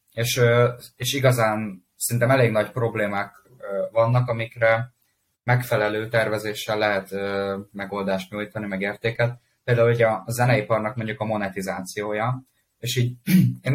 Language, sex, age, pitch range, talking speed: Hungarian, male, 20-39, 105-125 Hz, 115 wpm